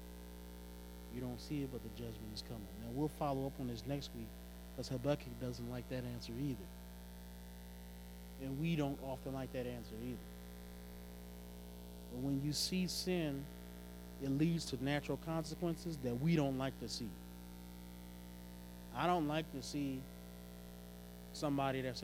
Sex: male